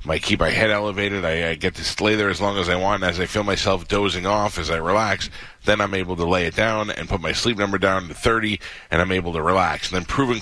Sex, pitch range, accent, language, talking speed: male, 85-105 Hz, American, English, 275 wpm